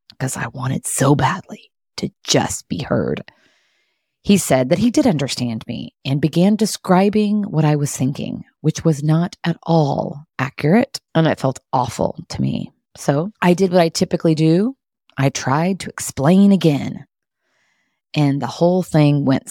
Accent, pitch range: American, 140-190 Hz